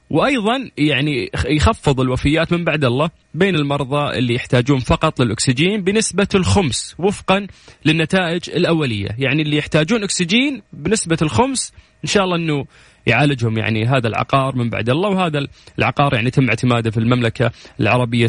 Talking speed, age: 140 wpm, 30-49